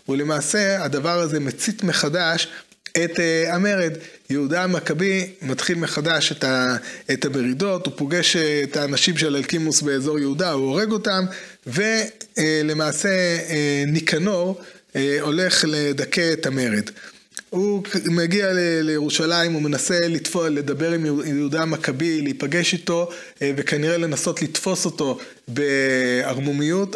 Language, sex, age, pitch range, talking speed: Hebrew, male, 30-49, 145-185 Hz, 120 wpm